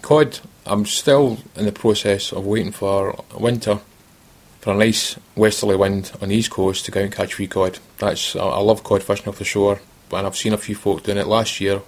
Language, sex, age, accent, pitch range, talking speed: English, male, 30-49, British, 100-120 Hz, 220 wpm